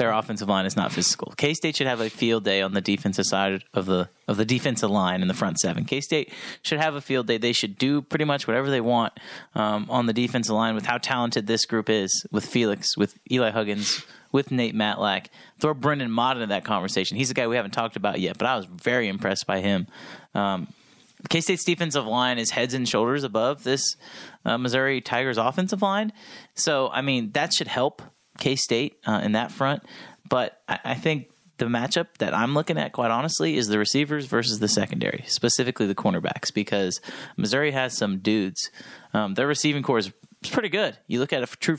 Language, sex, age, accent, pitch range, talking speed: English, male, 30-49, American, 110-135 Hz, 210 wpm